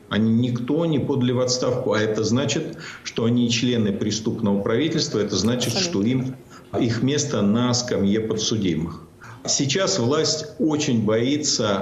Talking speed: 135 wpm